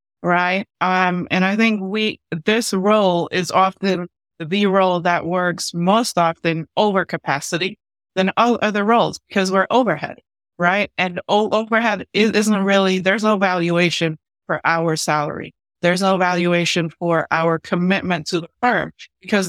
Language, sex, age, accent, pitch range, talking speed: English, female, 30-49, American, 165-195 Hz, 145 wpm